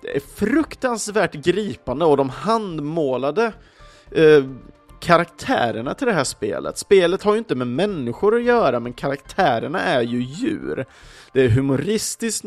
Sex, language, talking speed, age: male, Swedish, 135 wpm, 30-49